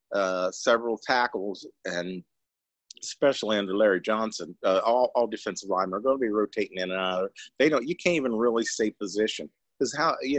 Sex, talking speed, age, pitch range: male, 185 wpm, 40-59, 95-125 Hz